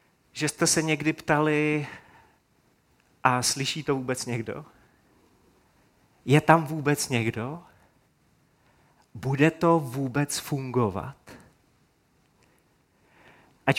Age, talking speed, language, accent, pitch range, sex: 30-49, 85 wpm, Czech, native, 135-185 Hz, male